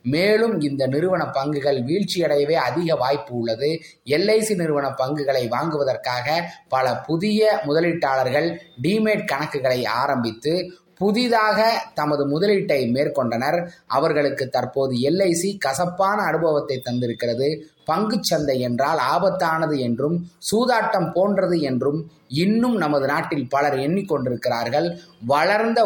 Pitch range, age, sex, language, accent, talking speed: 140-185 Hz, 20-39, male, Tamil, native, 95 wpm